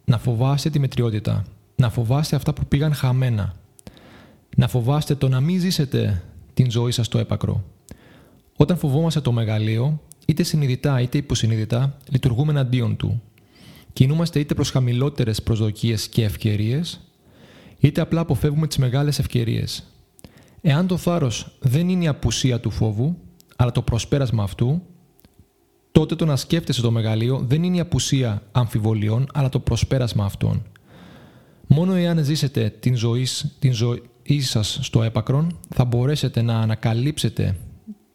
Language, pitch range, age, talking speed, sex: Greek, 115-145 Hz, 30-49, 135 wpm, male